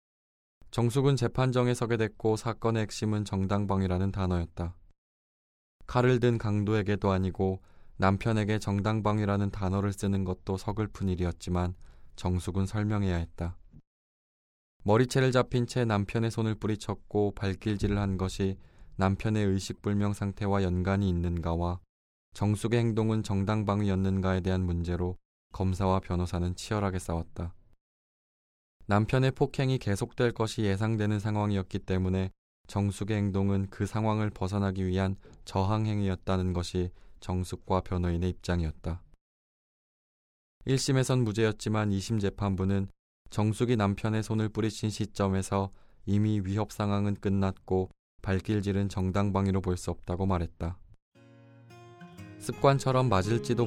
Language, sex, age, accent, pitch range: Korean, male, 20-39, native, 90-110 Hz